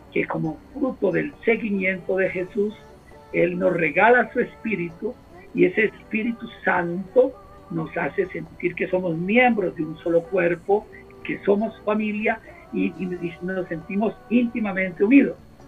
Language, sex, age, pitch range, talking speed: Spanish, male, 50-69, 165-200 Hz, 135 wpm